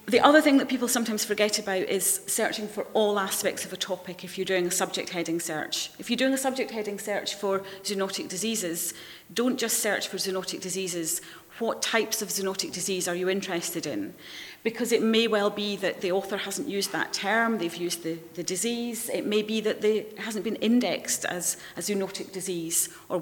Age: 40-59